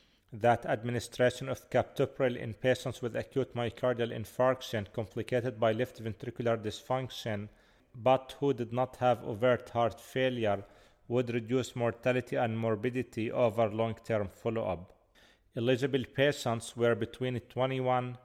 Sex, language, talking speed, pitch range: male, English, 120 wpm, 115-125 Hz